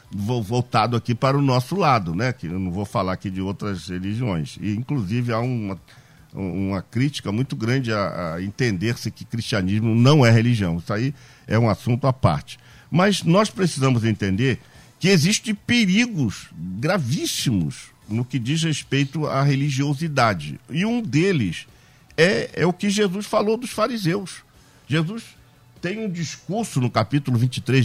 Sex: male